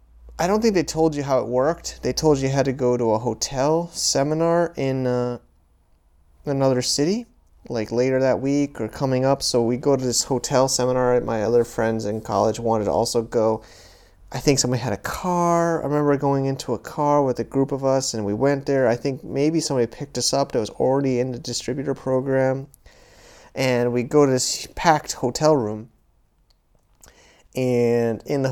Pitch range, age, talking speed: 115-140 Hz, 30-49, 195 wpm